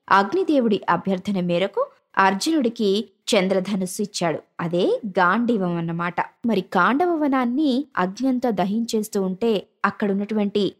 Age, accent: 20-39, native